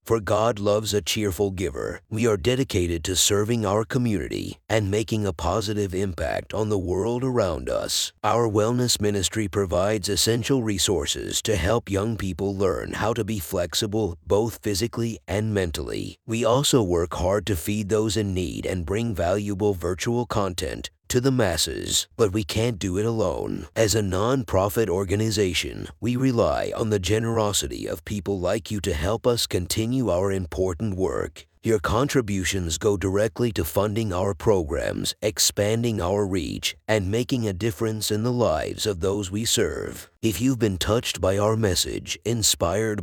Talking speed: 160 wpm